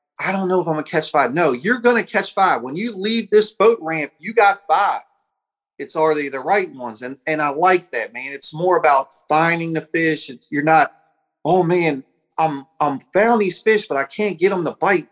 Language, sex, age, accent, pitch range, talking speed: English, male, 30-49, American, 150-195 Hz, 230 wpm